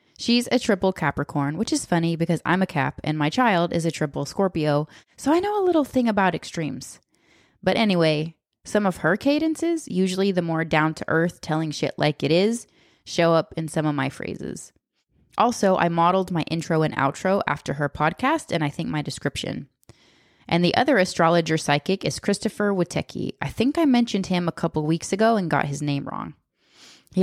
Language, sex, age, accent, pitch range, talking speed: English, female, 20-39, American, 155-200 Hz, 190 wpm